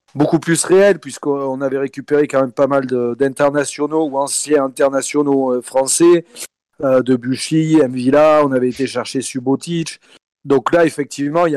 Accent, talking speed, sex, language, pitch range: French, 160 wpm, male, French, 135-160 Hz